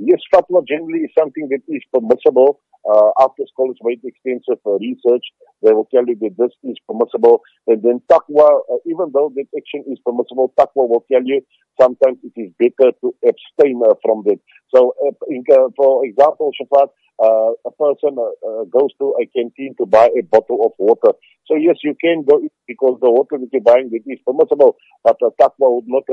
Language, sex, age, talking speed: English, male, 50-69, 200 wpm